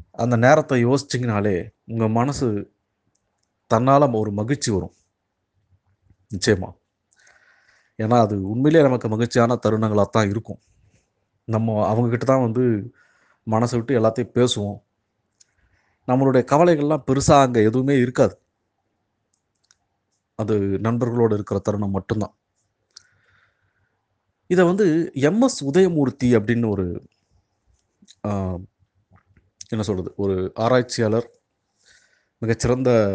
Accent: native